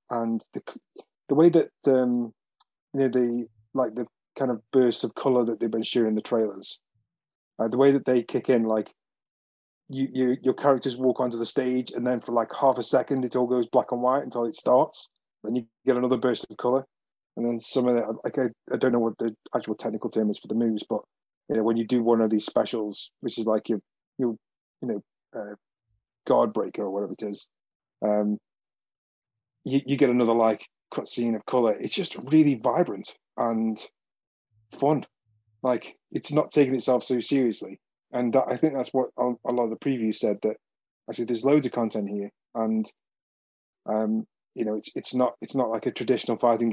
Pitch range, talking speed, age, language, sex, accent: 110-125 Hz, 200 wpm, 30-49, English, male, British